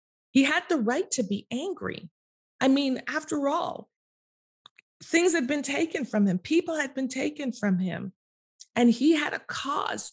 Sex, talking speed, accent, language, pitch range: female, 165 wpm, American, English, 195-250 Hz